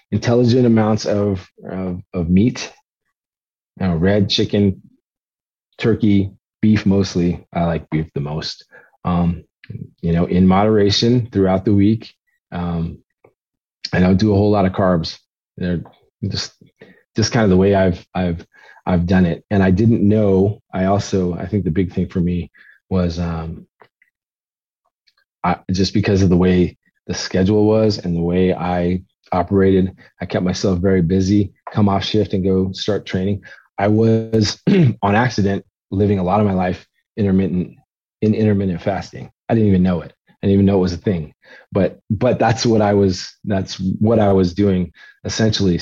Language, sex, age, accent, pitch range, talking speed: English, male, 30-49, American, 90-110 Hz, 165 wpm